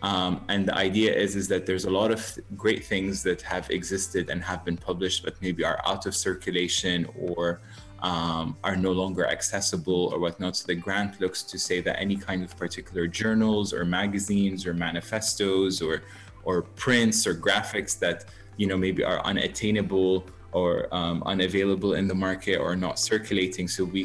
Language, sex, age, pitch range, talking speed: English, male, 20-39, 90-105 Hz, 180 wpm